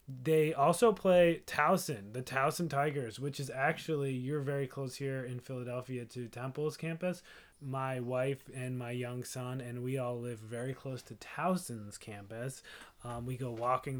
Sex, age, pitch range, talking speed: male, 20-39, 115-145 Hz, 165 wpm